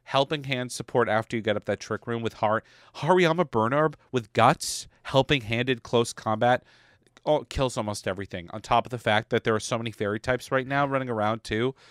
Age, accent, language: 40-59, American, English